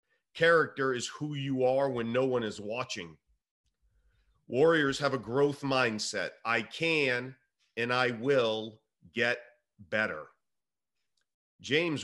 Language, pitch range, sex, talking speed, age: English, 125-150 Hz, male, 115 wpm, 40-59